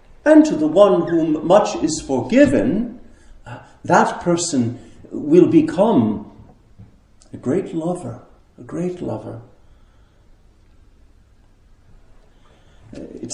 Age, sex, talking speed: 50-69, male, 85 wpm